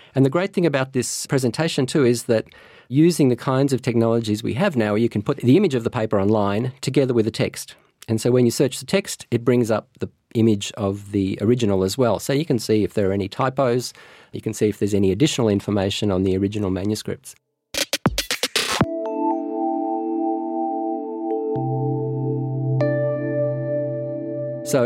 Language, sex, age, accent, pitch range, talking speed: English, male, 40-59, Australian, 105-140 Hz, 170 wpm